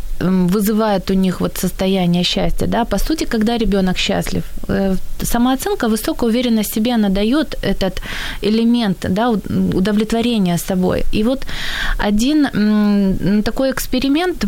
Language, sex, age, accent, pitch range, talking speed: Ukrainian, female, 20-39, native, 190-230 Hz, 115 wpm